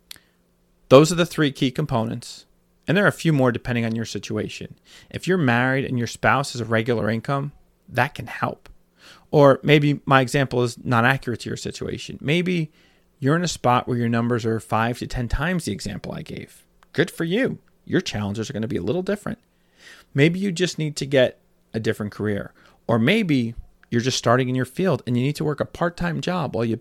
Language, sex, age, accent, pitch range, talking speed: English, male, 30-49, American, 110-145 Hz, 215 wpm